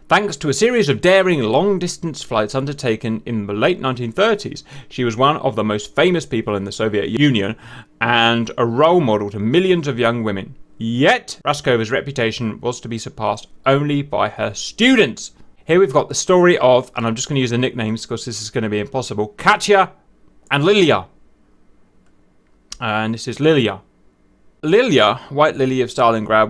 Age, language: 30-49, English